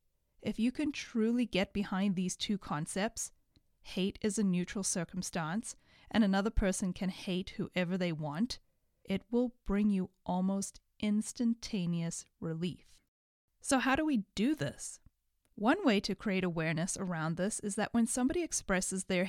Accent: American